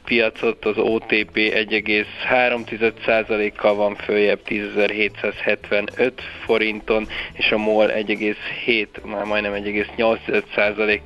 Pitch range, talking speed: 105-110 Hz, 85 wpm